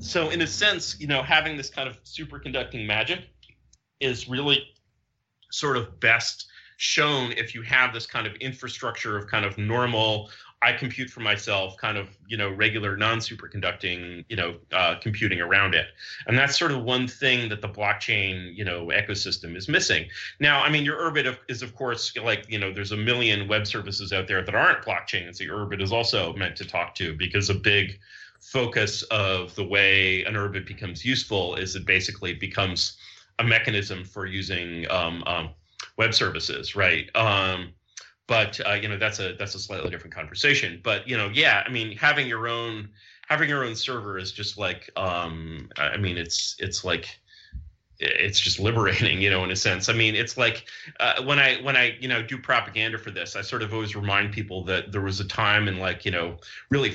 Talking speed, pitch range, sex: 200 wpm, 95-115 Hz, male